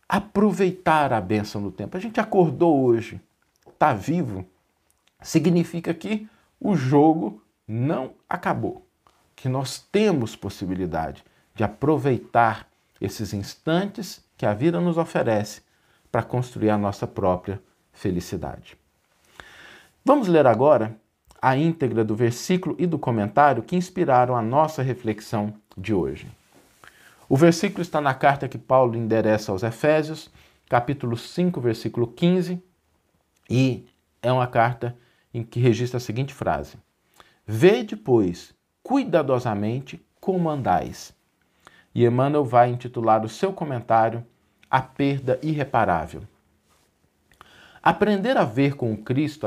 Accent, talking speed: Brazilian, 120 wpm